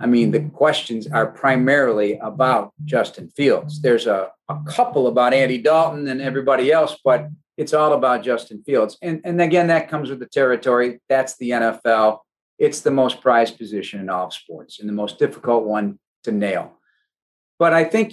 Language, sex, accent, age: English, male, American, 50-69